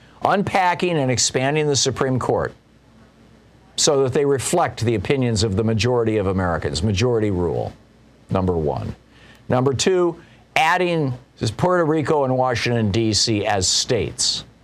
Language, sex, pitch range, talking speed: English, male, 125-180 Hz, 125 wpm